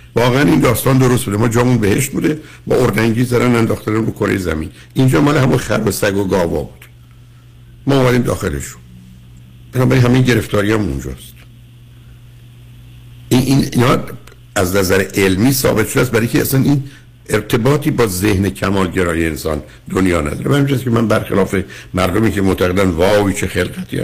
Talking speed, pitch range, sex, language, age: 155 wpm, 85-120 Hz, male, Persian, 60-79